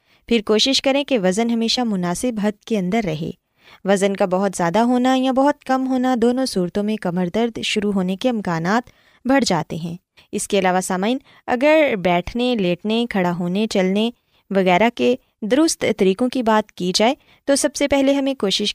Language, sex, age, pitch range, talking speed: Urdu, female, 20-39, 195-270 Hz, 180 wpm